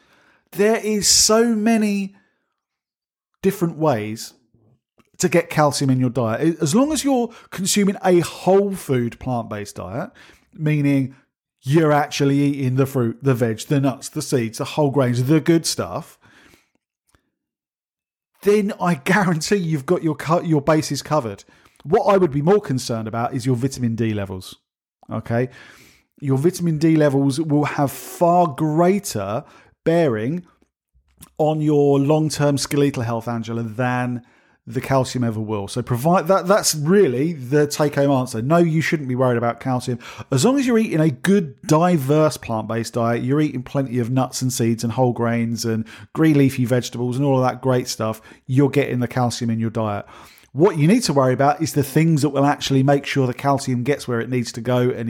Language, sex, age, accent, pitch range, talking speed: English, male, 50-69, British, 120-160 Hz, 170 wpm